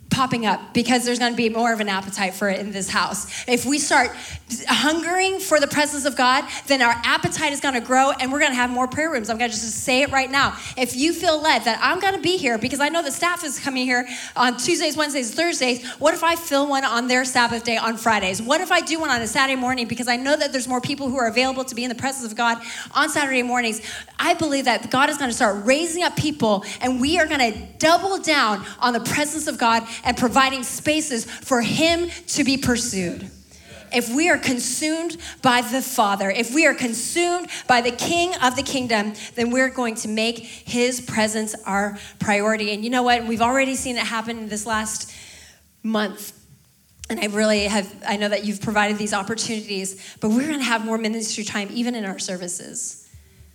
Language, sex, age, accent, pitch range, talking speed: English, female, 20-39, American, 220-275 Hz, 215 wpm